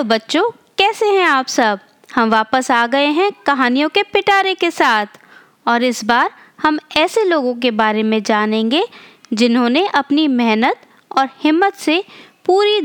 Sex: female